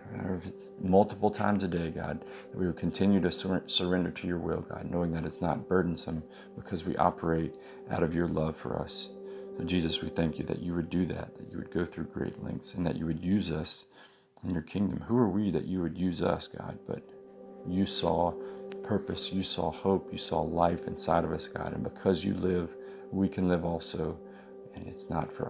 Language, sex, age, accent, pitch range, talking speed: English, male, 40-59, American, 80-95 Hz, 210 wpm